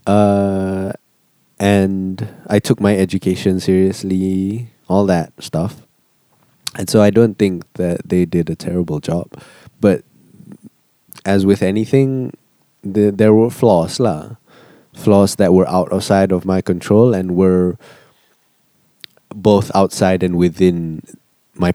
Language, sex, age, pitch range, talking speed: English, male, 20-39, 85-100 Hz, 125 wpm